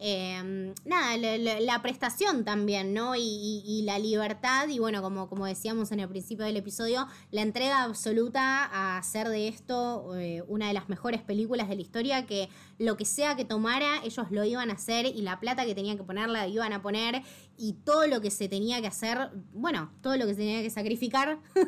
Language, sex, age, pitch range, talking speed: Spanish, female, 20-39, 200-240 Hz, 210 wpm